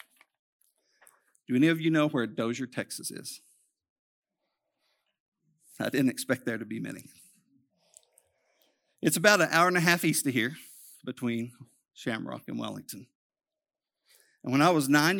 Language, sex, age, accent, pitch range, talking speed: English, male, 50-69, American, 125-195 Hz, 140 wpm